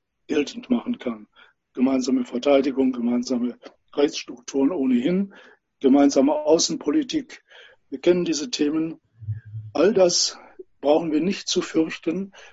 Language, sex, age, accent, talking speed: English, male, 60-79, German, 100 wpm